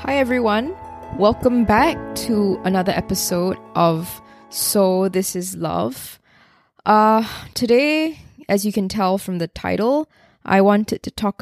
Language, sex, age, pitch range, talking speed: English, female, 10-29, 175-215 Hz, 130 wpm